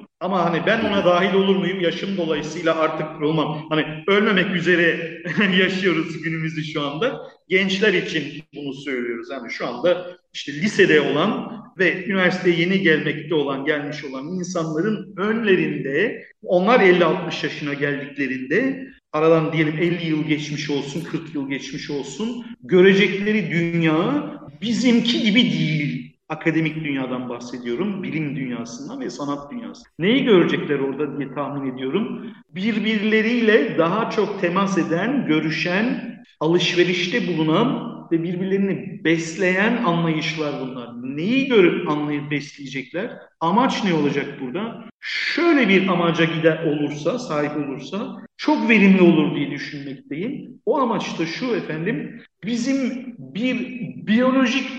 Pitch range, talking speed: 155-215 Hz, 120 wpm